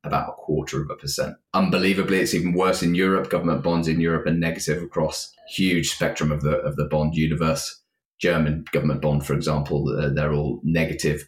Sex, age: male, 30-49